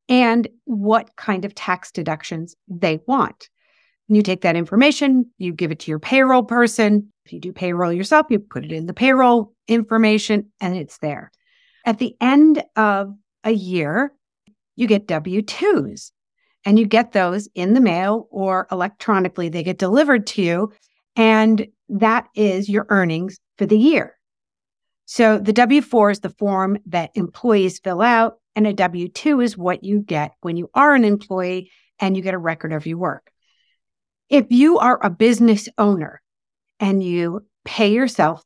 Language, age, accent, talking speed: English, 50-69, American, 165 wpm